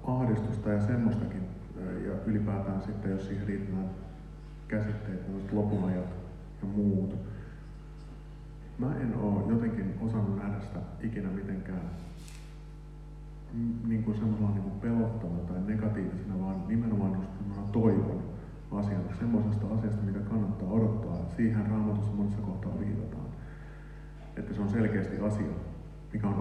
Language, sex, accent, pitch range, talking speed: Finnish, male, native, 95-125 Hz, 110 wpm